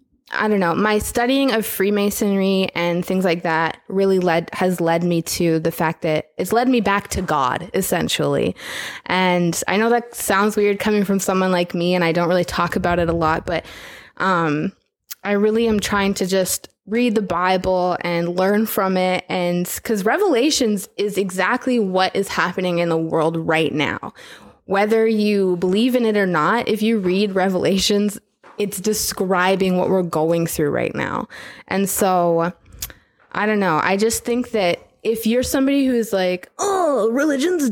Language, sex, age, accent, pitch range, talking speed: English, female, 20-39, American, 180-235 Hz, 175 wpm